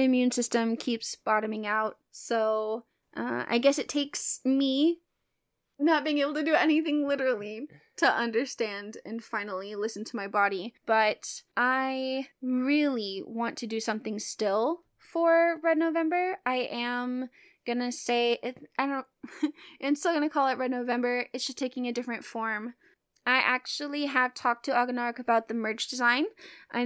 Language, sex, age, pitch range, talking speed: English, female, 20-39, 230-290 Hz, 150 wpm